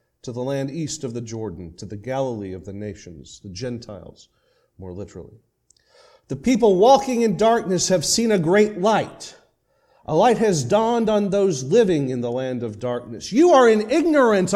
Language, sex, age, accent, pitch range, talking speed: English, male, 40-59, American, 155-245 Hz, 175 wpm